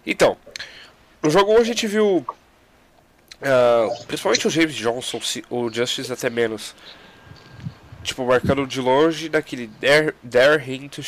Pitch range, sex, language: 115-145 Hz, male, Portuguese